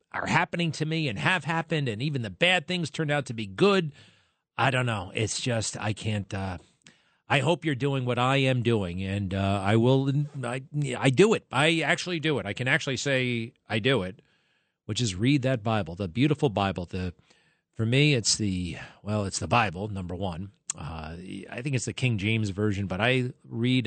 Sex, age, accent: male, 40-59, American